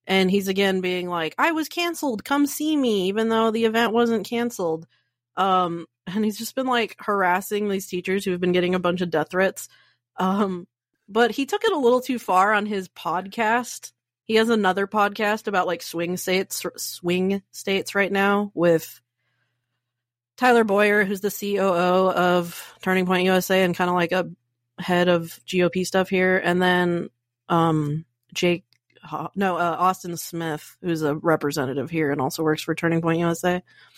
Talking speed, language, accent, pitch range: 175 wpm, English, American, 175-210 Hz